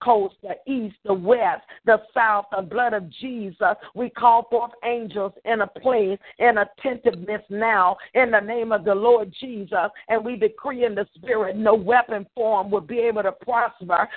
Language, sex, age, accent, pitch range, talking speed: English, female, 50-69, American, 210-250 Hz, 175 wpm